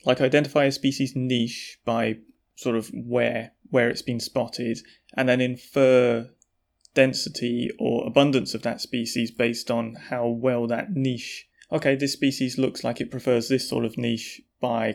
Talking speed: 160 wpm